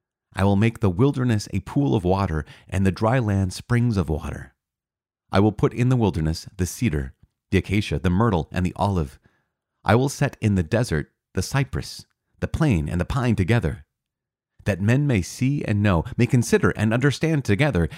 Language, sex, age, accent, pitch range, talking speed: English, male, 40-59, American, 90-125 Hz, 185 wpm